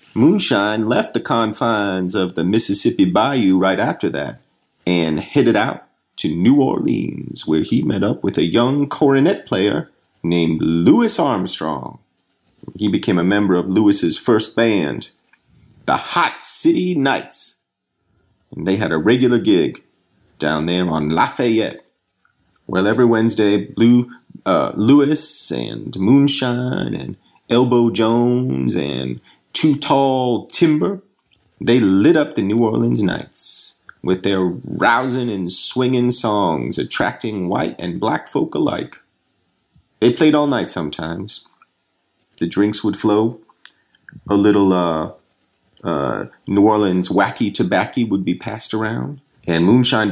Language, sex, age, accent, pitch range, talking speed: English, male, 40-59, American, 90-125 Hz, 130 wpm